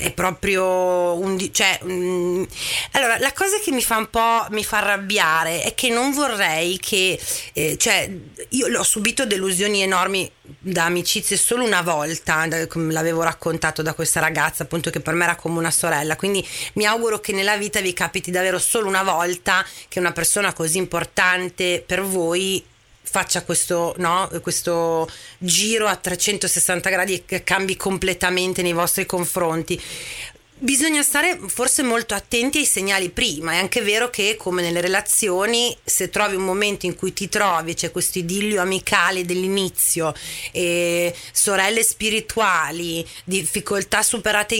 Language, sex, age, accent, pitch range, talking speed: Italian, female, 30-49, native, 175-210 Hz, 150 wpm